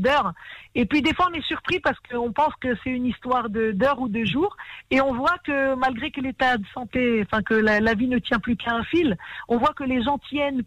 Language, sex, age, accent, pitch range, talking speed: French, female, 50-69, French, 235-270 Hz, 255 wpm